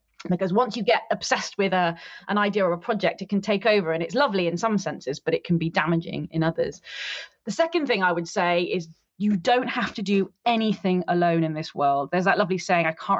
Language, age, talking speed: English, 20-39, 230 wpm